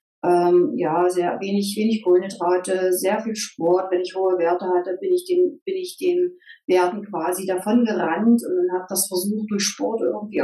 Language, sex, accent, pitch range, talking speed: German, female, German, 175-215 Hz, 180 wpm